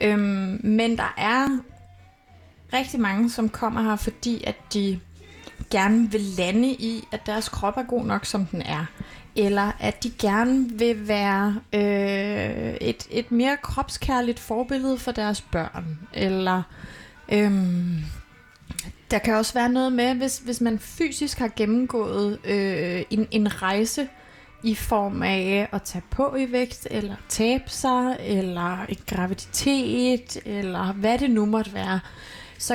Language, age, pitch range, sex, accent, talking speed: Danish, 20-39, 200-240 Hz, female, native, 135 wpm